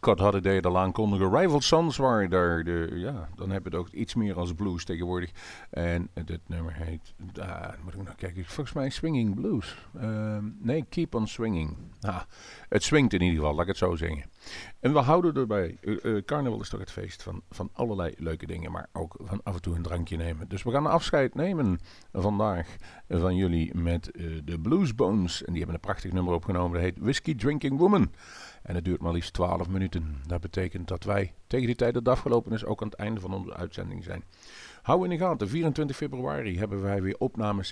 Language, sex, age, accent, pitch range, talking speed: Dutch, male, 50-69, Dutch, 85-110 Hz, 215 wpm